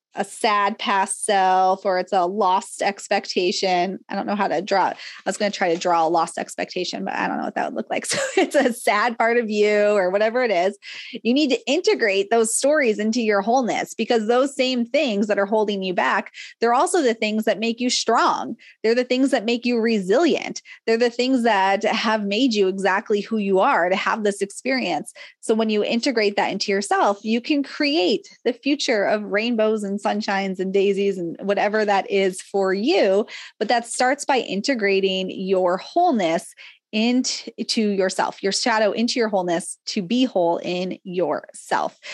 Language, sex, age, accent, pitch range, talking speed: English, female, 20-39, American, 195-235 Hz, 195 wpm